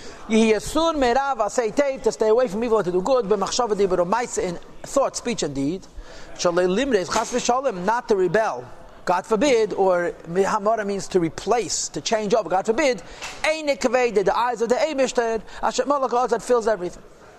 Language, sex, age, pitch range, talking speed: English, male, 40-59, 205-255 Hz, 120 wpm